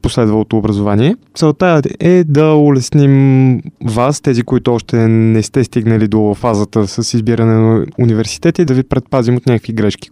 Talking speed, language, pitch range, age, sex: 150 wpm, Bulgarian, 110-140 Hz, 20-39, male